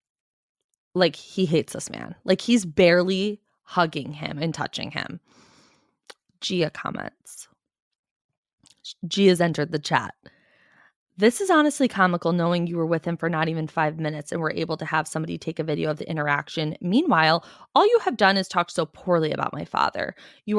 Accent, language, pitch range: American, English, 155-205 Hz